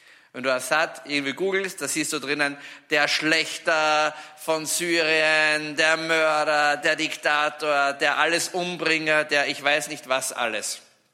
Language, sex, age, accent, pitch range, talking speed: German, male, 50-69, German, 145-175 Hz, 115 wpm